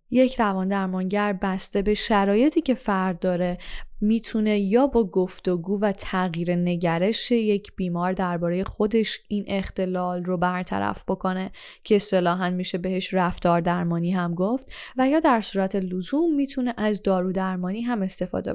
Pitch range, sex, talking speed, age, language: 185-240 Hz, female, 140 wpm, 10-29, Persian